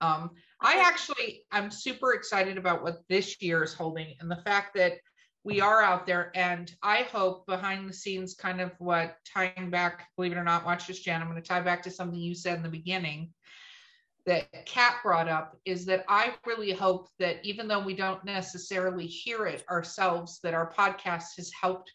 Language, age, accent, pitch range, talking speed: English, 50-69, American, 160-185 Hz, 200 wpm